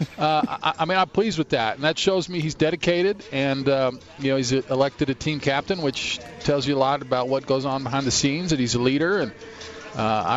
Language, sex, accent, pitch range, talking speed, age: English, male, American, 130-165 Hz, 235 wpm, 40-59